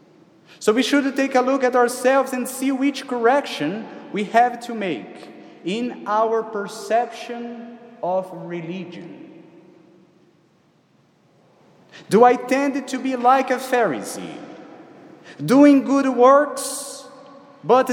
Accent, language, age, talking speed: Brazilian, English, 30-49, 110 wpm